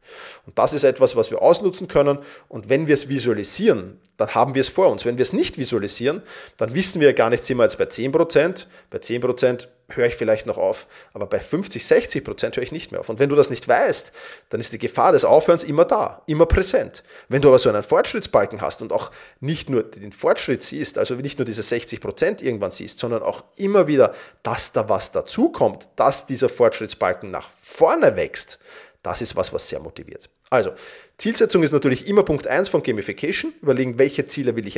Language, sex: German, male